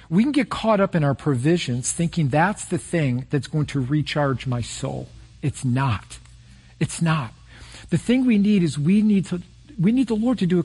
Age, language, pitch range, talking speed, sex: 50-69, English, 140-200 Hz, 210 wpm, male